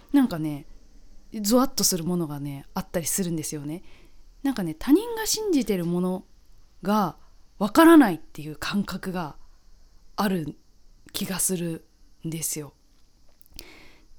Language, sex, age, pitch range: Japanese, female, 20-39, 160-240 Hz